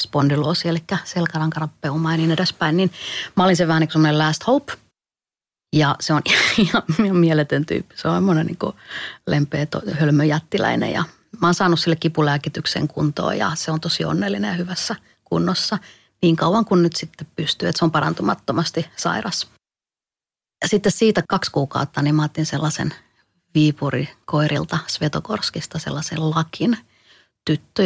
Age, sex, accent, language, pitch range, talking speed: 30-49, female, native, Finnish, 155-175 Hz, 145 wpm